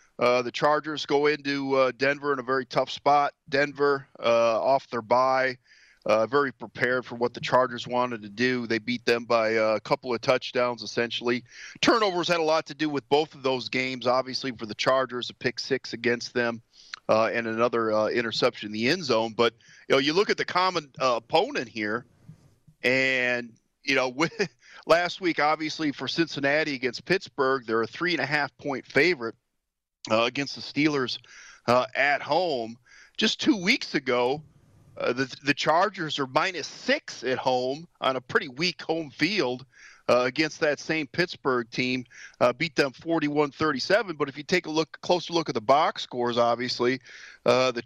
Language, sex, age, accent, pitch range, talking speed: English, male, 40-59, American, 120-155 Hz, 185 wpm